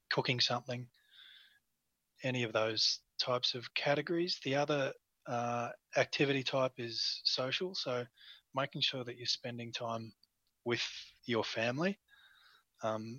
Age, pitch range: 20-39, 110-125 Hz